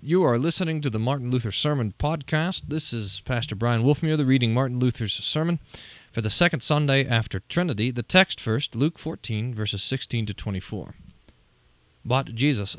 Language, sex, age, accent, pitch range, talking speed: English, male, 40-59, American, 105-150 Hz, 170 wpm